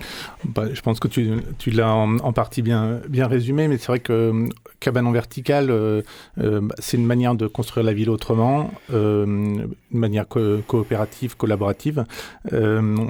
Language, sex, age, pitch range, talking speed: French, male, 40-59, 105-120 Hz, 165 wpm